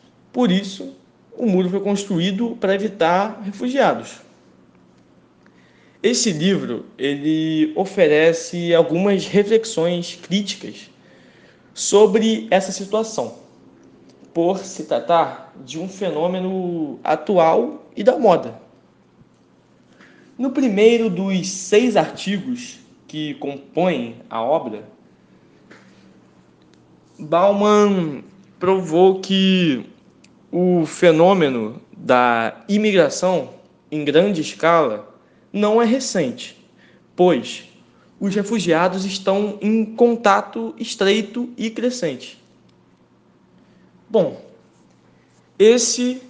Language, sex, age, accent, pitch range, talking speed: Portuguese, male, 20-39, Brazilian, 155-210 Hz, 80 wpm